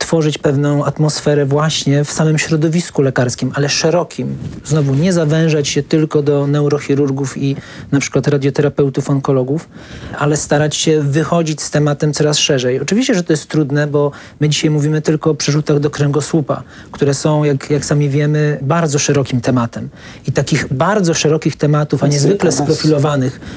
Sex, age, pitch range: male, 40-59, 140-160 Hz